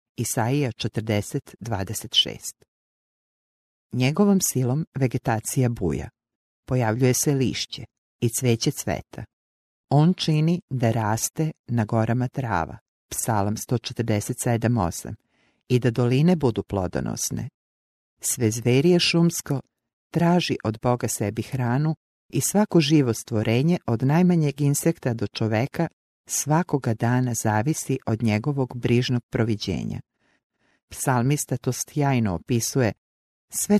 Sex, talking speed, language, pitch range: female, 95 wpm, English, 110-140 Hz